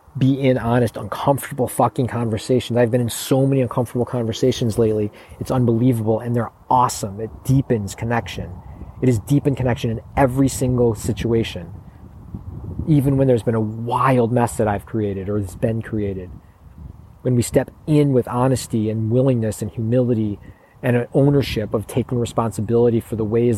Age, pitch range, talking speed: 40-59, 105-120 Hz, 160 wpm